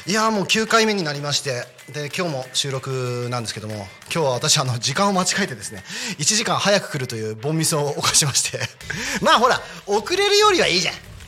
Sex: male